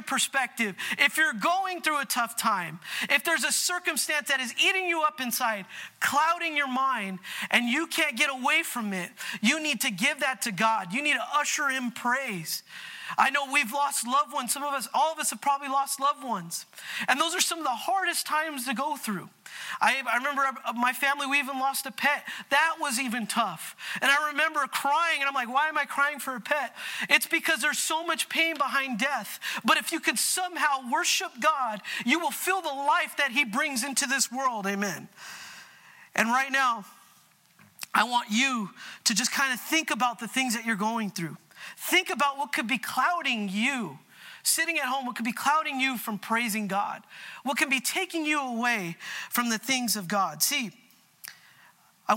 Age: 40-59